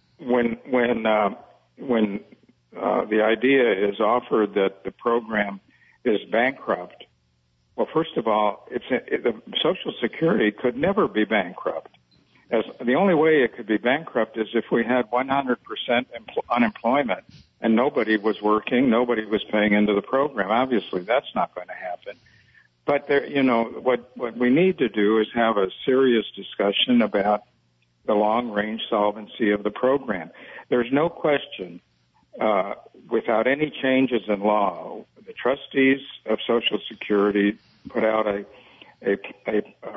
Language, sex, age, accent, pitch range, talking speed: English, male, 60-79, American, 105-125 Hz, 150 wpm